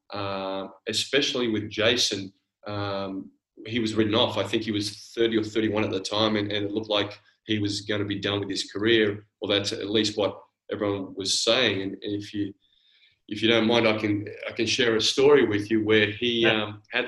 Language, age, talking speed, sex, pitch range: English, 20-39, 220 wpm, male, 105-115 Hz